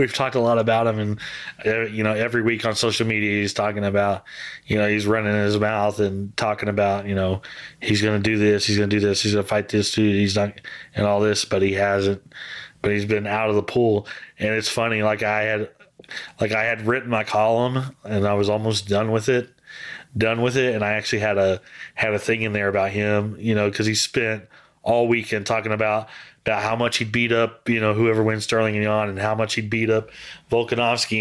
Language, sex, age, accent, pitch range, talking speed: English, male, 20-39, American, 105-115 Hz, 235 wpm